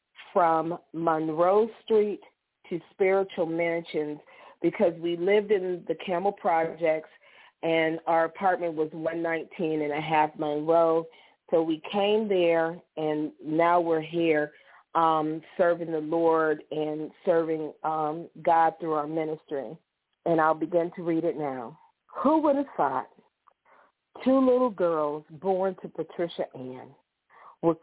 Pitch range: 160-205 Hz